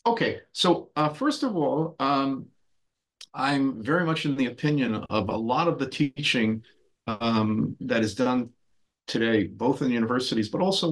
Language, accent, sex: English, American, male